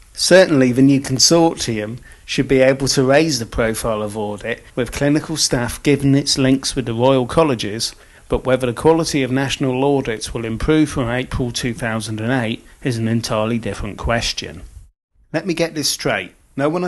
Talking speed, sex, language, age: 165 wpm, male, English, 30-49